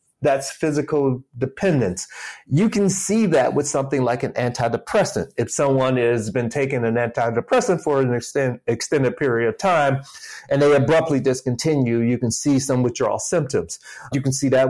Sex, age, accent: male, 30-49, American